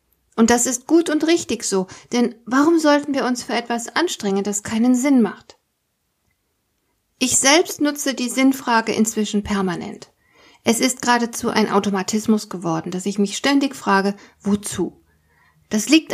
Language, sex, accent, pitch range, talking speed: German, female, German, 190-245 Hz, 150 wpm